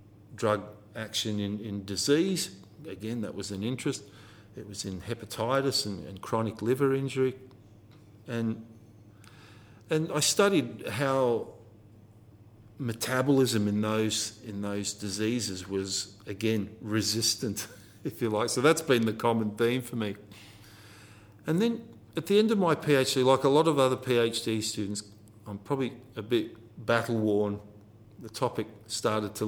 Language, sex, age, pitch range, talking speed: English, male, 50-69, 105-120 Hz, 140 wpm